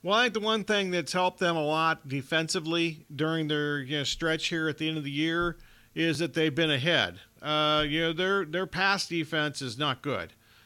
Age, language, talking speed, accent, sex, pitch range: 50-69, English, 220 wpm, American, male, 145-180 Hz